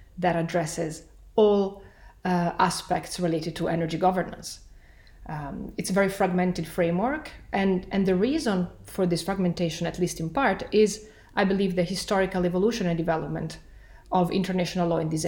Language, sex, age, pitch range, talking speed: English, female, 30-49, 170-195 Hz, 155 wpm